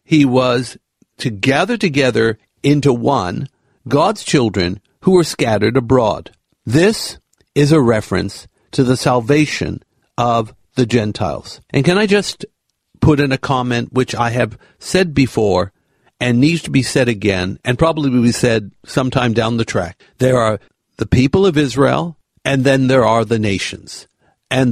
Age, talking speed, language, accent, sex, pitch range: 50-69, 155 wpm, English, American, male, 115-145 Hz